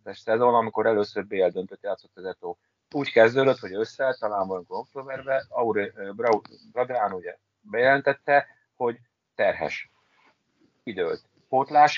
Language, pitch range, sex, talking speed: Hungarian, 110-145 Hz, male, 110 wpm